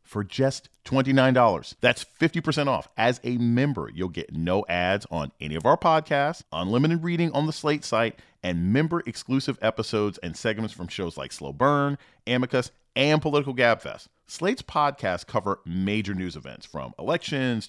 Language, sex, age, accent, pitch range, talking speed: English, male, 40-59, American, 95-145 Hz, 160 wpm